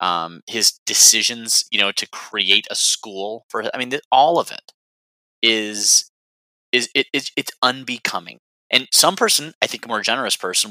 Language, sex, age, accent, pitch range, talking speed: English, male, 30-49, American, 100-135 Hz, 175 wpm